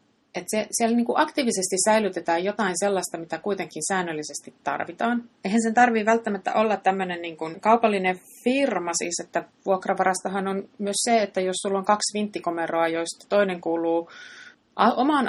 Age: 30-49